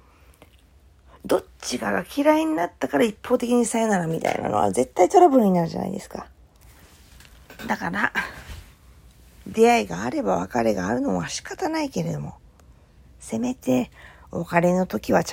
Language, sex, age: Japanese, female, 40-59